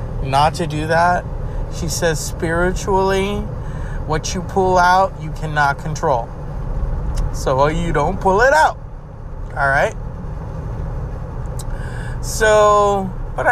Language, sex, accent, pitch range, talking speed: English, male, American, 130-190 Hz, 100 wpm